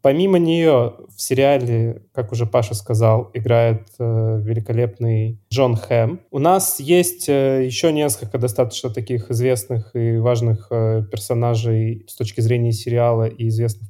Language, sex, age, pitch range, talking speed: Russian, male, 20-39, 115-130 Hz, 140 wpm